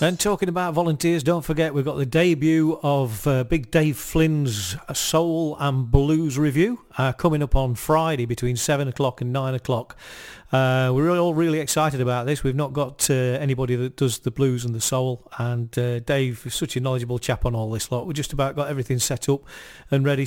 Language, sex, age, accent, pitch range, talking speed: English, male, 40-59, British, 130-160 Hz, 205 wpm